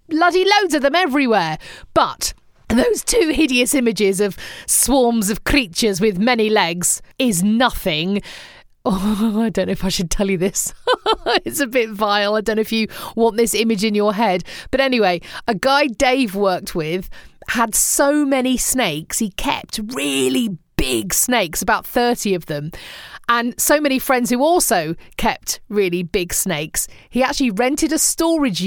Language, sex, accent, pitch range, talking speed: English, female, British, 195-275 Hz, 165 wpm